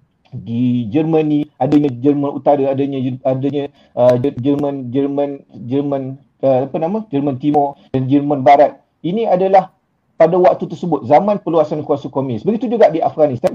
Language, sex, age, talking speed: Malay, male, 40-59, 140 wpm